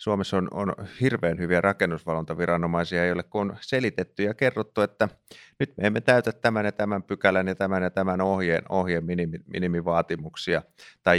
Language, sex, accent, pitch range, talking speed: Finnish, male, native, 85-105 Hz, 155 wpm